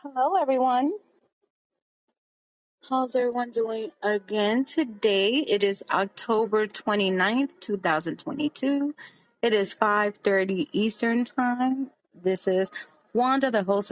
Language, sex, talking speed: English, female, 95 wpm